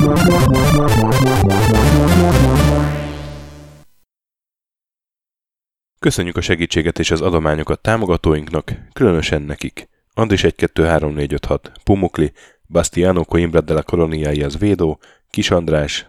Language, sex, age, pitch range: Hungarian, male, 10-29, 80-95 Hz